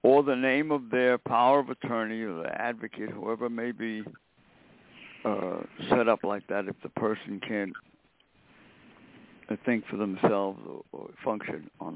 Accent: American